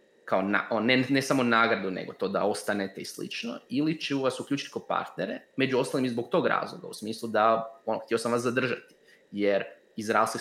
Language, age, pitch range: Croatian, 20-39, 110-130 Hz